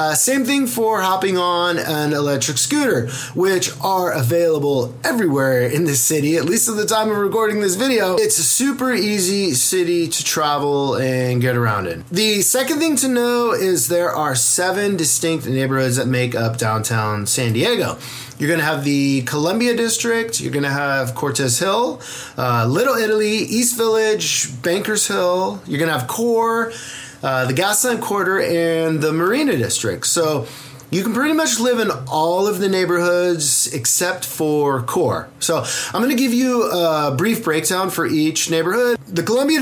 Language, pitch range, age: English, 140-200 Hz, 20-39